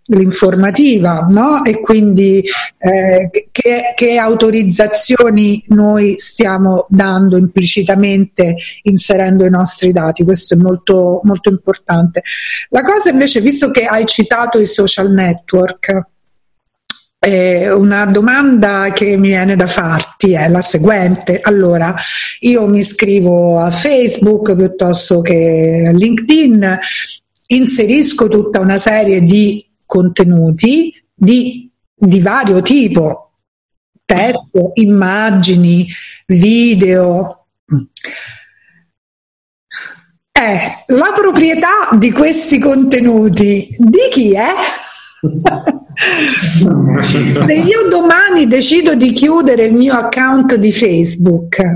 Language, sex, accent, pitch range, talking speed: Italian, female, native, 185-235 Hz, 100 wpm